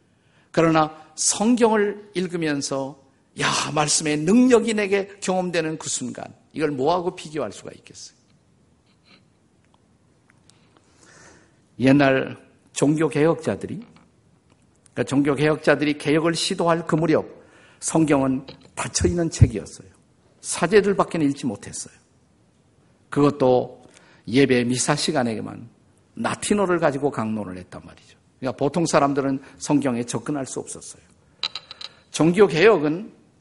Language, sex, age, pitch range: Korean, male, 50-69, 140-180 Hz